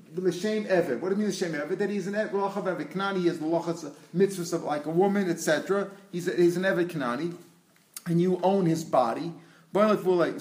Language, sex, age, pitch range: English, male, 40-59, 165-190 Hz